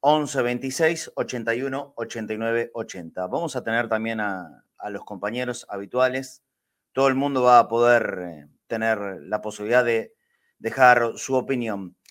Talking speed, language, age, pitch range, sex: 135 wpm, Spanish, 30-49, 105-135 Hz, male